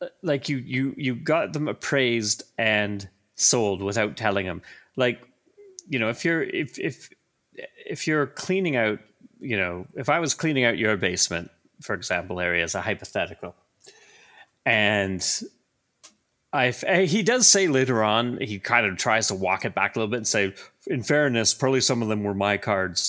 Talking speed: 175 wpm